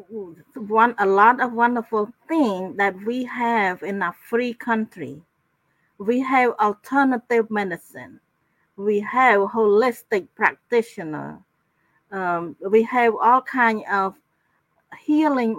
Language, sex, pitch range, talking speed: English, female, 205-255 Hz, 110 wpm